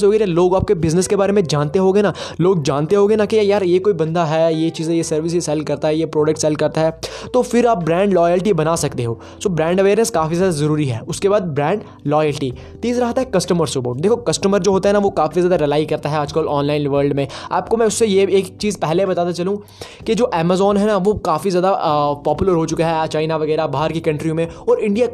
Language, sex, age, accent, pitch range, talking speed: Hindi, male, 20-39, native, 160-195 Hz, 235 wpm